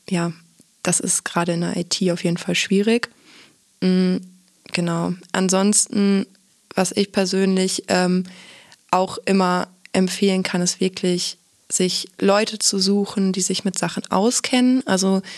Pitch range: 185-200 Hz